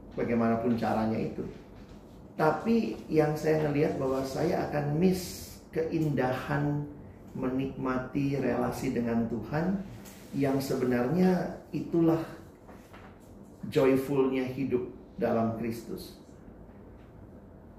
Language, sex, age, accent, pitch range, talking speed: Indonesian, male, 30-49, native, 120-155 Hz, 80 wpm